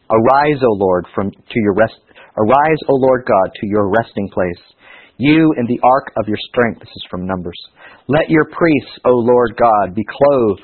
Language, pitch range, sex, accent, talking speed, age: English, 100-130 Hz, male, American, 190 wpm, 50-69